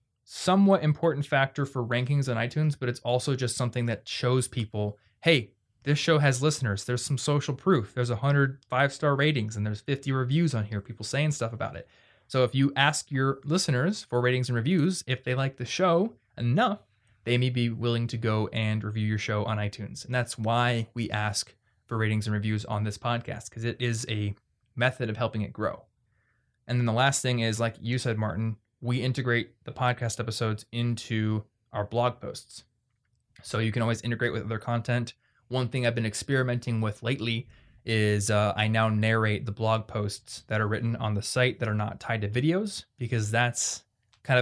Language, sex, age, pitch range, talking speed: English, male, 20-39, 110-130 Hz, 200 wpm